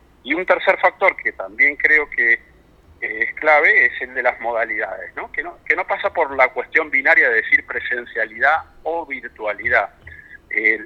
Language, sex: Spanish, male